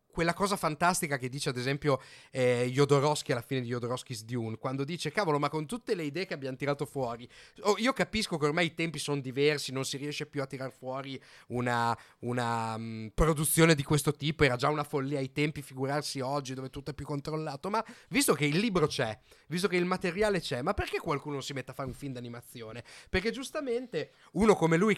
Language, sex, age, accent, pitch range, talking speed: Italian, male, 30-49, native, 140-175 Hz, 205 wpm